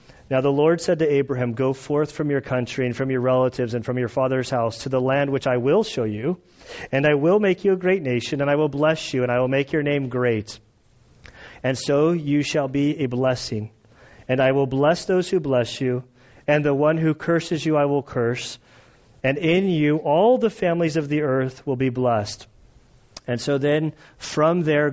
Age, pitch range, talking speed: 40-59, 130-150 Hz, 215 wpm